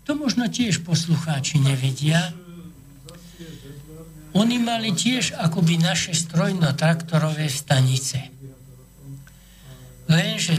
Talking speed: 75 wpm